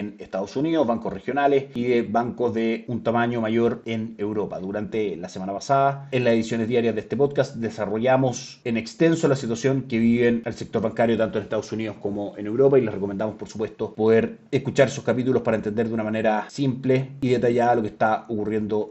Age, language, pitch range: 30-49, Spanish, 110-125 Hz